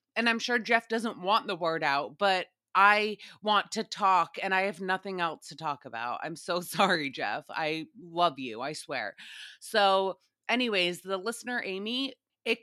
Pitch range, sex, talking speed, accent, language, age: 180-225 Hz, female, 175 wpm, American, English, 20-39